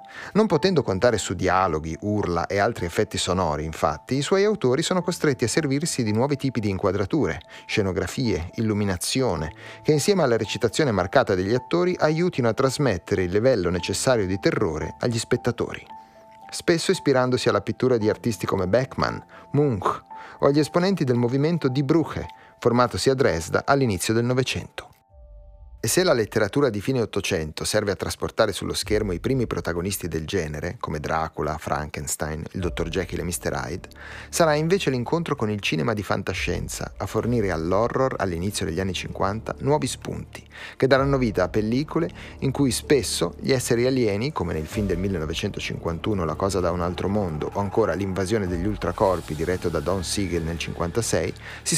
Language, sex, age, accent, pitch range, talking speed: Italian, male, 30-49, native, 90-130 Hz, 165 wpm